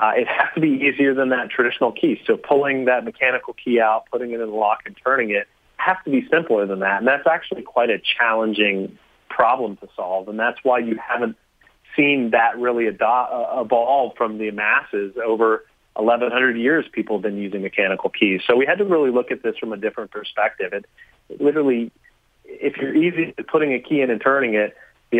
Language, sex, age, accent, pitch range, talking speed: English, male, 30-49, American, 105-135 Hz, 200 wpm